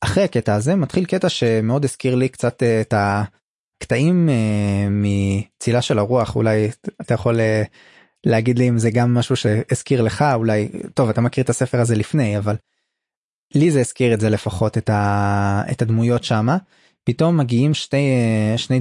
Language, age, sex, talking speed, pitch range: Hebrew, 20-39, male, 150 wpm, 110-135 Hz